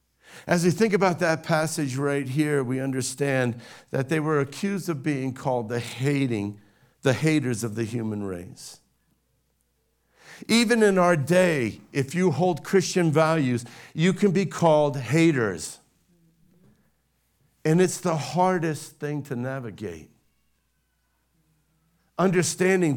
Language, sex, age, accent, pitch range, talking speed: English, male, 50-69, American, 125-160 Hz, 125 wpm